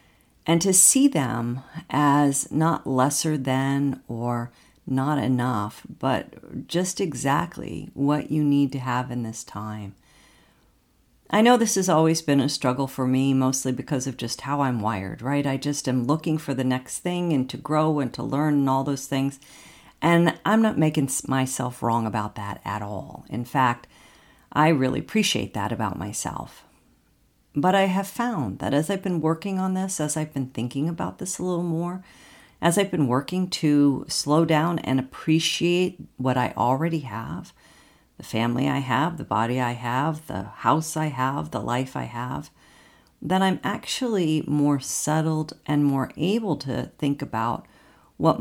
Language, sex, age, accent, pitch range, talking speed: English, female, 50-69, American, 125-160 Hz, 170 wpm